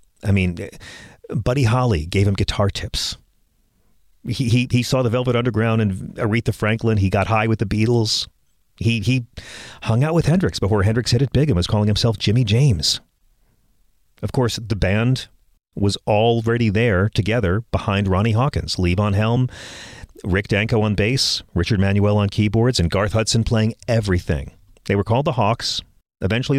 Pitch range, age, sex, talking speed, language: 95-120 Hz, 40-59, male, 165 wpm, English